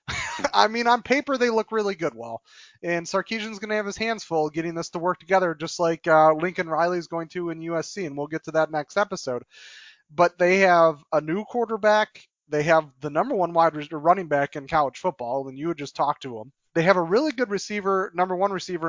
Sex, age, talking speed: male, 30-49, 230 wpm